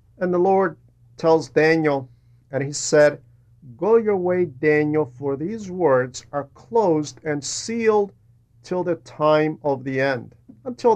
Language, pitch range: English, 120-170 Hz